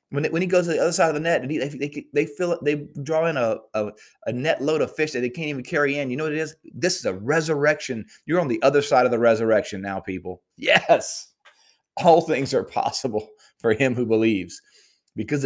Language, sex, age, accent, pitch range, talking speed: English, male, 30-49, American, 95-145 Hz, 235 wpm